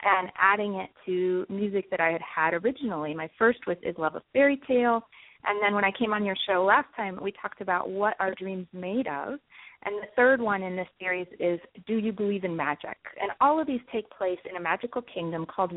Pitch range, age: 185-240 Hz, 30-49